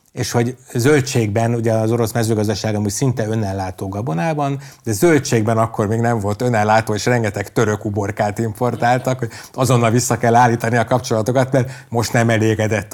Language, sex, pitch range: Hungarian, male, 110-135 Hz